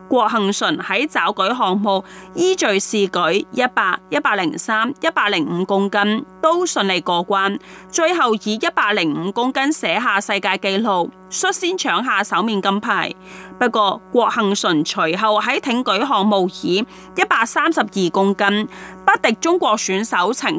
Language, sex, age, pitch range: Chinese, female, 30-49, 195-255 Hz